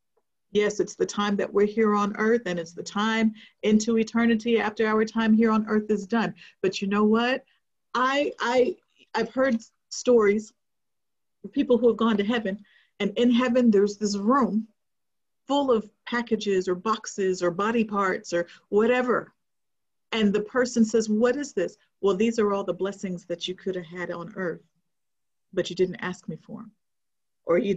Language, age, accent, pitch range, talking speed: English, 50-69, American, 185-230 Hz, 180 wpm